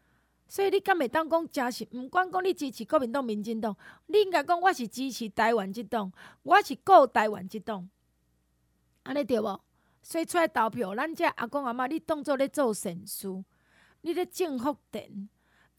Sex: female